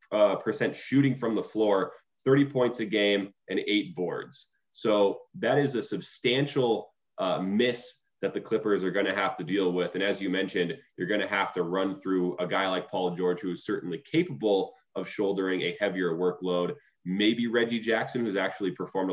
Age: 20-39